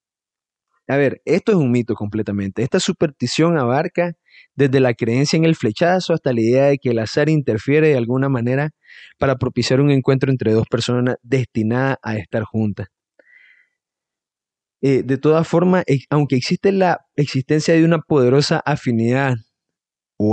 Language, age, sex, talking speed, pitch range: Spanish, 30-49, male, 150 wpm, 120-150 Hz